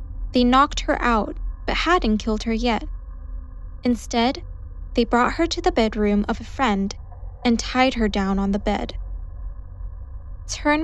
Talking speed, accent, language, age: 150 wpm, American, English, 10-29